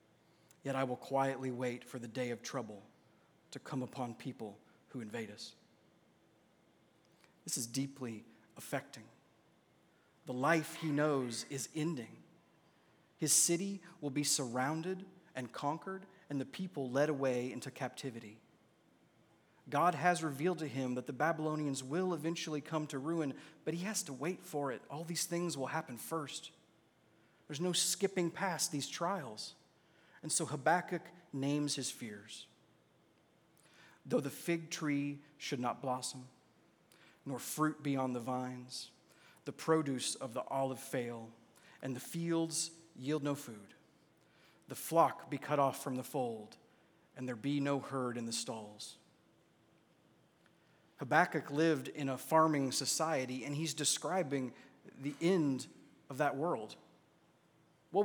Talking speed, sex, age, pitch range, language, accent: 140 wpm, male, 30-49, 130-165 Hz, English, American